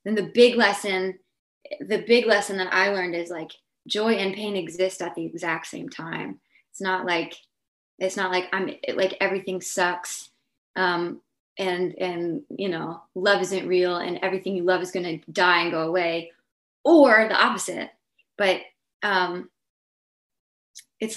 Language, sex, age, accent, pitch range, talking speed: English, female, 20-39, American, 175-205 Hz, 160 wpm